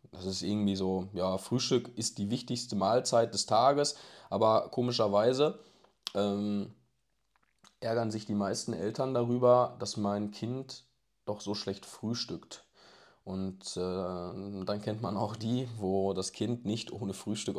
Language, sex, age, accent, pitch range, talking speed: German, male, 20-39, German, 95-120 Hz, 140 wpm